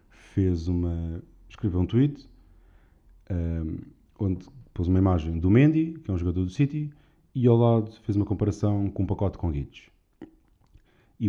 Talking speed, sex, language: 160 wpm, male, Portuguese